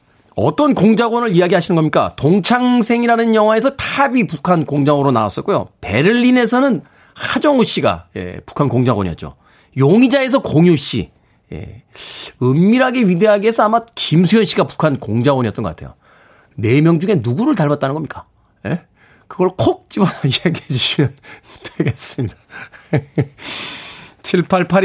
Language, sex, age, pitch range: Korean, male, 40-59, 145-220 Hz